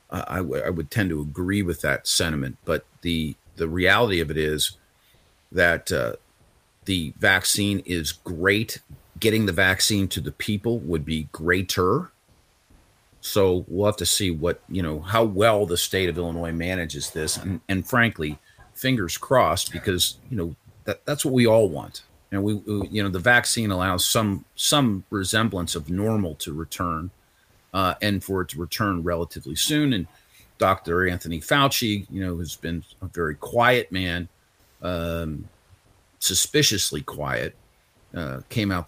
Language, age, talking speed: English, 40-59, 160 wpm